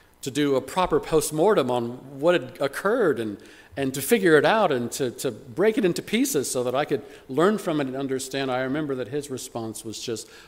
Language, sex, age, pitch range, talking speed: English, male, 40-59, 110-145 Hz, 220 wpm